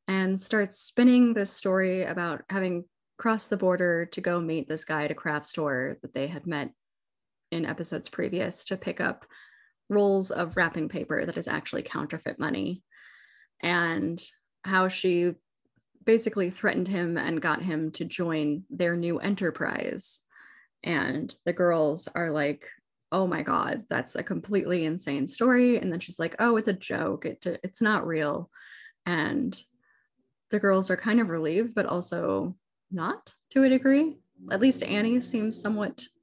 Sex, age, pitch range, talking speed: female, 20-39, 170-215 Hz, 155 wpm